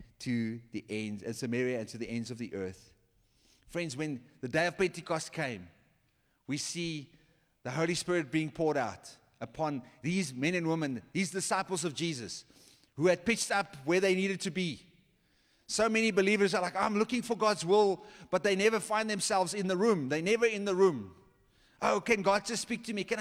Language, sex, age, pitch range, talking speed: English, male, 30-49, 120-190 Hz, 195 wpm